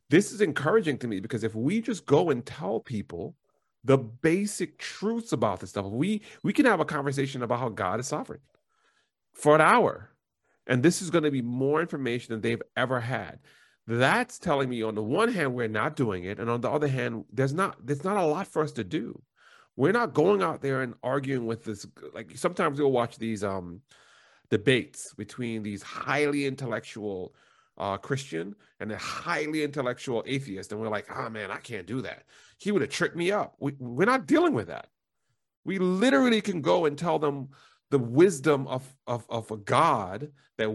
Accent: American